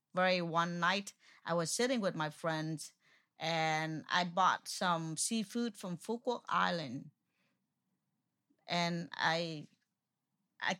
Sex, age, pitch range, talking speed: female, 30-49, 170-225 Hz, 110 wpm